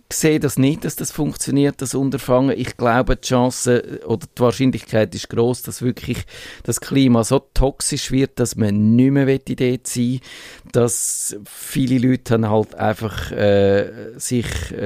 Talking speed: 160 wpm